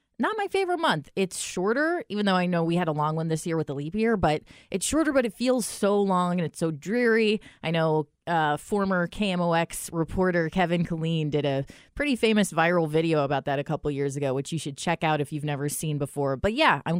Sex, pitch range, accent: female, 155-200 Hz, American